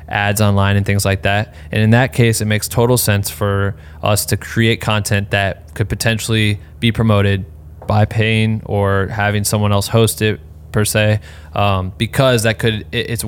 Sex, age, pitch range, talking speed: male, 20-39, 95-110 Hz, 175 wpm